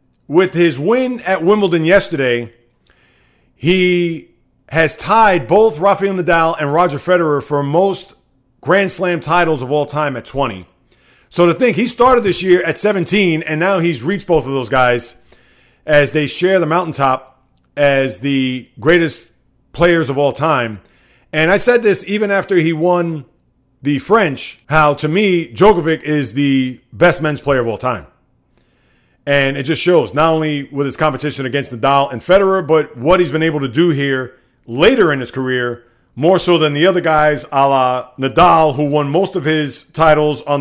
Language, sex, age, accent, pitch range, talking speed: English, male, 30-49, American, 135-180 Hz, 175 wpm